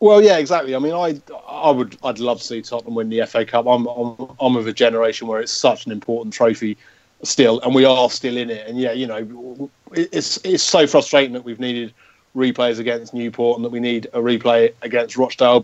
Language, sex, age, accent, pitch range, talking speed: English, male, 30-49, British, 120-140 Hz, 225 wpm